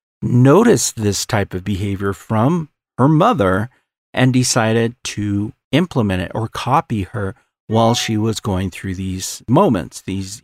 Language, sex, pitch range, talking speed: English, male, 100-140 Hz, 140 wpm